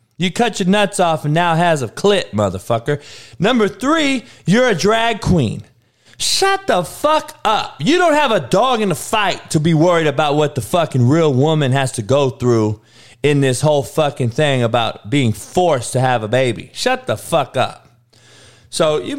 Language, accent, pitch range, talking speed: English, American, 115-165 Hz, 190 wpm